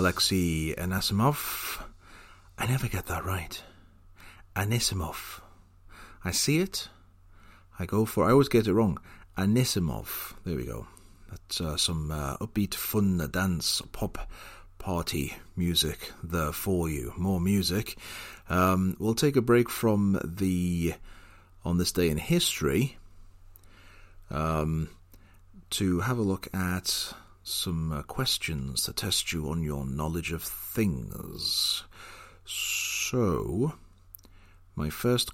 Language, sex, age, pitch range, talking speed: English, male, 40-59, 85-100 Hz, 120 wpm